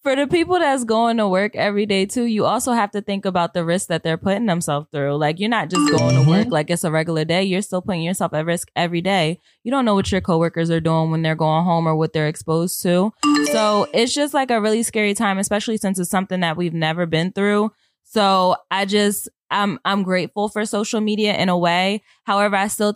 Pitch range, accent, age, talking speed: 175-220 Hz, American, 20-39, 240 wpm